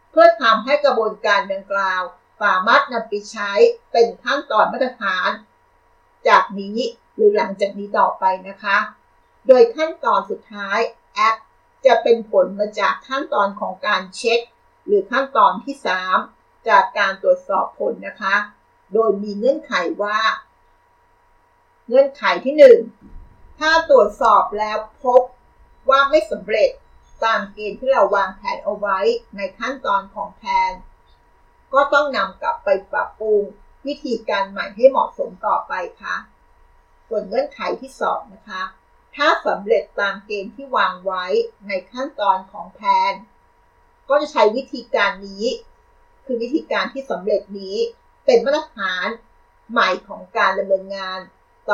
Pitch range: 200-295 Hz